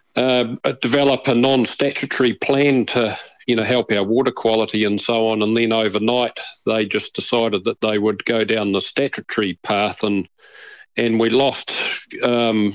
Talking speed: 165 wpm